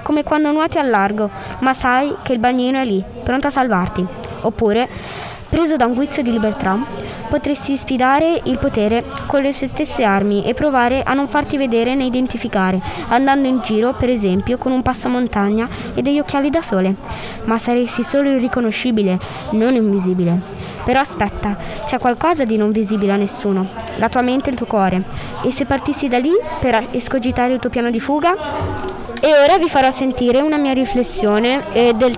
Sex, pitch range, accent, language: female, 215-265 Hz, native, Italian